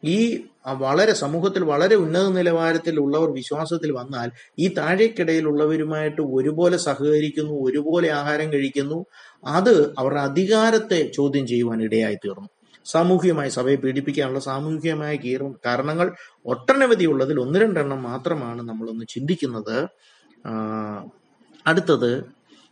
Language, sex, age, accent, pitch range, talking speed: Malayalam, male, 30-49, native, 125-170 Hz, 90 wpm